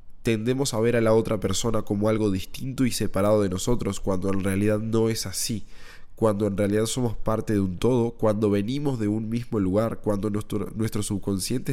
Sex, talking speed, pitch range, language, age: male, 195 wpm, 100-115 Hz, English, 20-39